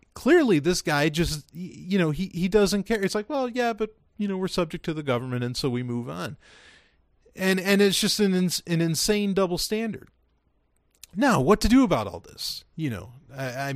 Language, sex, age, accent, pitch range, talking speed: English, male, 40-59, American, 115-180 Hz, 210 wpm